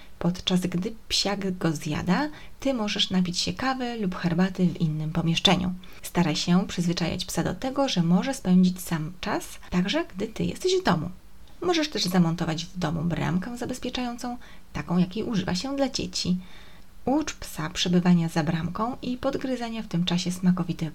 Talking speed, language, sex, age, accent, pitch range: 160 wpm, Polish, female, 20-39, native, 170-210 Hz